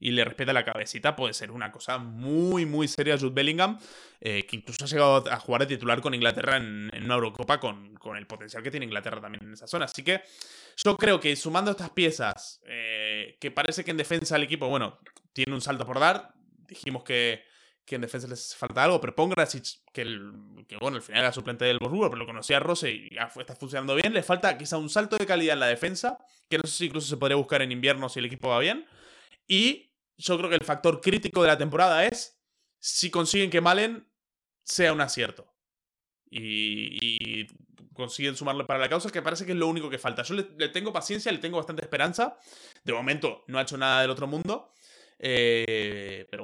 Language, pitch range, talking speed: Spanish, 125-180 Hz, 220 wpm